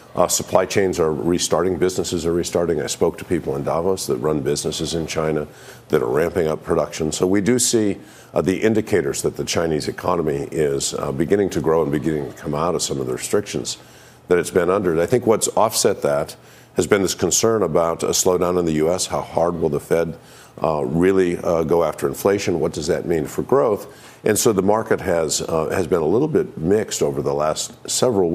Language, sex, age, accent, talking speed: English, male, 50-69, American, 215 wpm